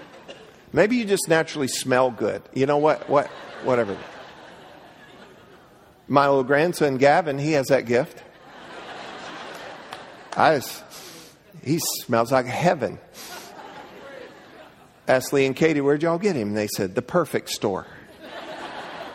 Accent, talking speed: American, 120 wpm